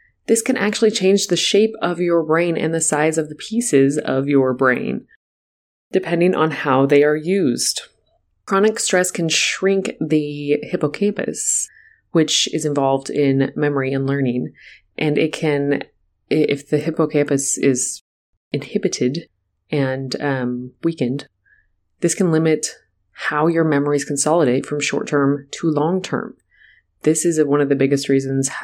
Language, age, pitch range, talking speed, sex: English, 20-39, 135-170 Hz, 140 wpm, female